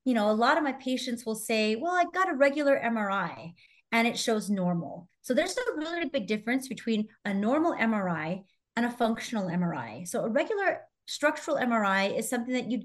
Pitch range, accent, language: 200-275 Hz, American, English